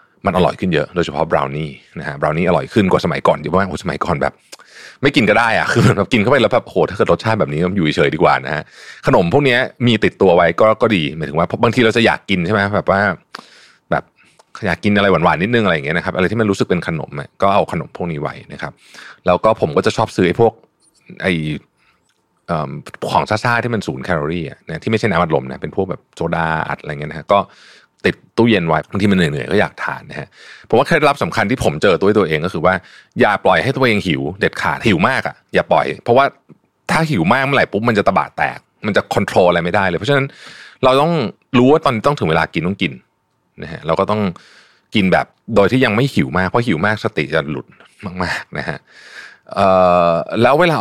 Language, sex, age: Thai, male, 30-49